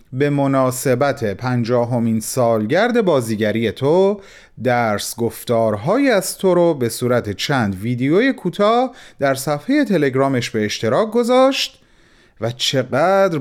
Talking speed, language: 110 wpm, Persian